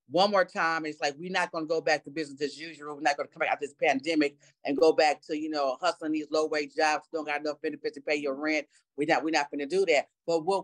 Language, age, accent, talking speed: English, 30-49, American, 295 wpm